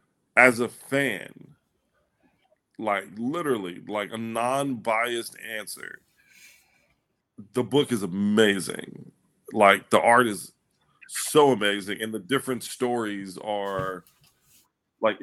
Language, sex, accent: English, male, American